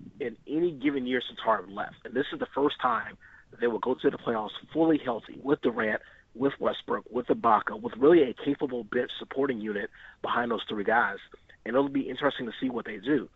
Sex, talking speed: male, 210 wpm